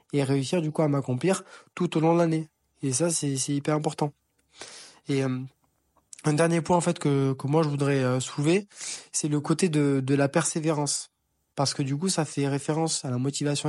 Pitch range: 135-160 Hz